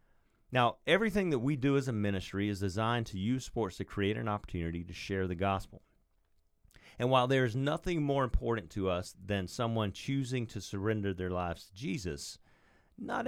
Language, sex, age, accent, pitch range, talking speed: English, male, 40-59, American, 95-125 Hz, 180 wpm